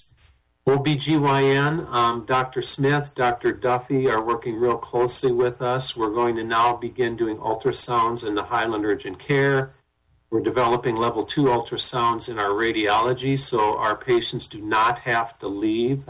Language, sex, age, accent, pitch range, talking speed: English, male, 50-69, American, 115-150 Hz, 150 wpm